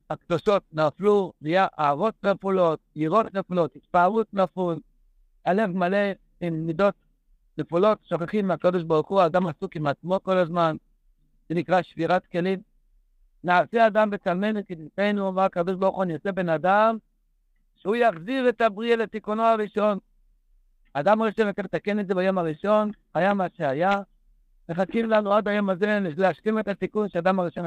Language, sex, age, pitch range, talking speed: Hebrew, male, 60-79, 170-210 Hz, 145 wpm